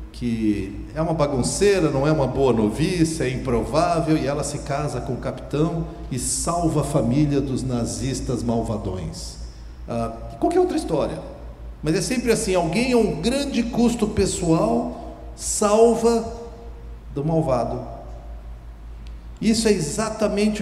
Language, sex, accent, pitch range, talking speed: Portuguese, male, Brazilian, 115-160 Hz, 135 wpm